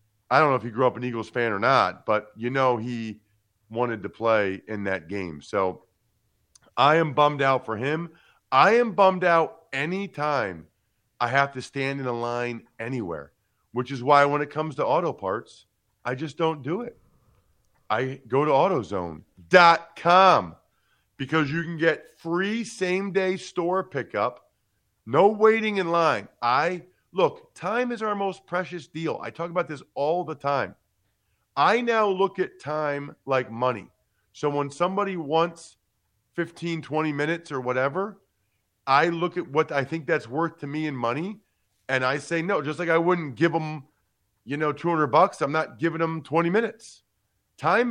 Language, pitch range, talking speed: English, 115-170 Hz, 170 wpm